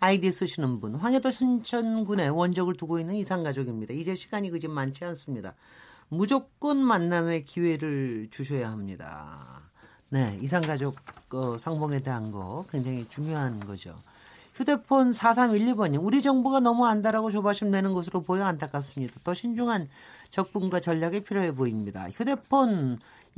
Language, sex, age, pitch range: Korean, male, 40-59, 145-225 Hz